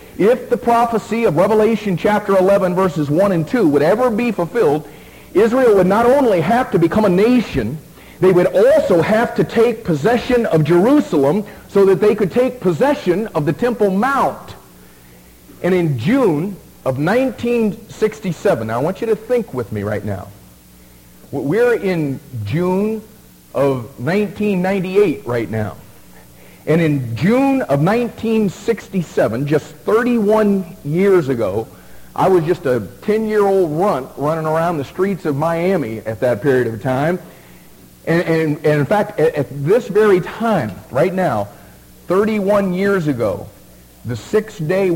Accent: American